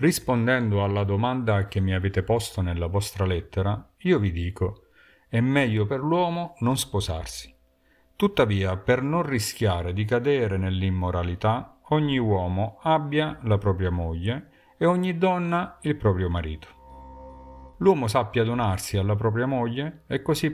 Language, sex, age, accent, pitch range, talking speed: Italian, male, 50-69, native, 95-130 Hz, 135 wpm